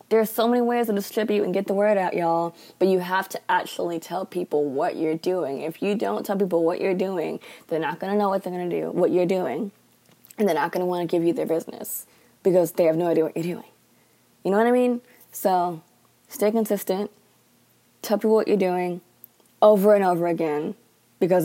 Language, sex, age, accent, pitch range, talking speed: English, female, 20-39, American, 170-200 Hz, 225 wpm